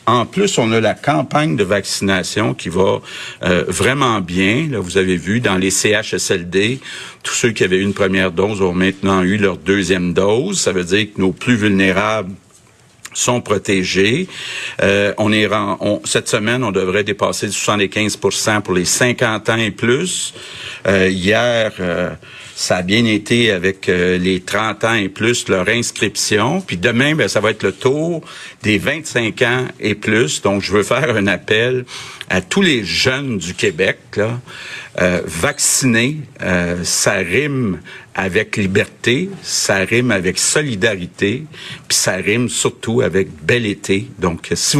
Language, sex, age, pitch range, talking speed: French, male, 50-69, 95-115 Hz, 160 wpm